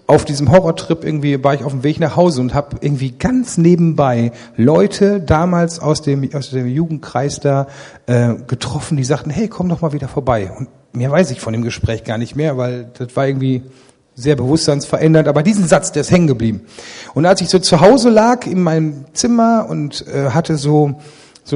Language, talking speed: German, 200 wpm